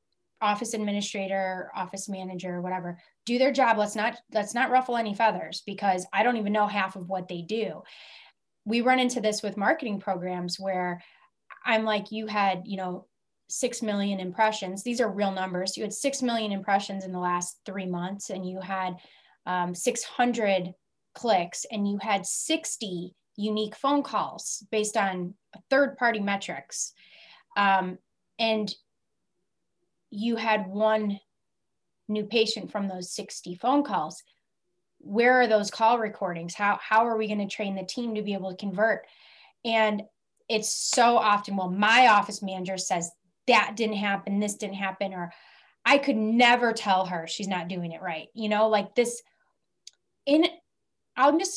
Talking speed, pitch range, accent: 160 wpm, 190-230 Hz, American